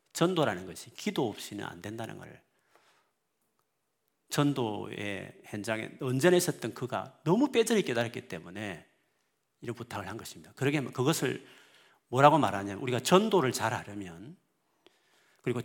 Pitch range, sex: 110-175 Hz, male